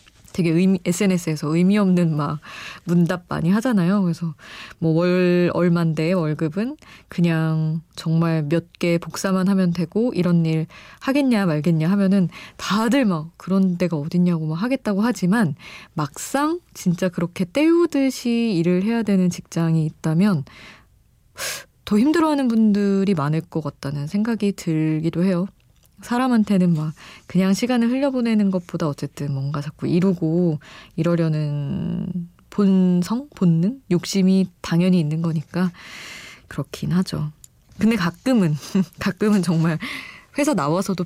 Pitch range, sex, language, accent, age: 160-200 Hz, female, Korean, native, 20-39